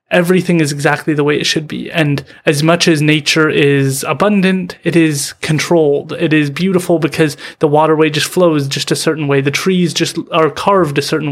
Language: English